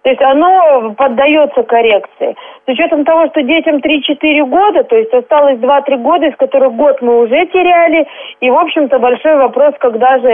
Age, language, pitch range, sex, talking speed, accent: 30-49, Russian, 240-300 Hz, female, 175 wpm, native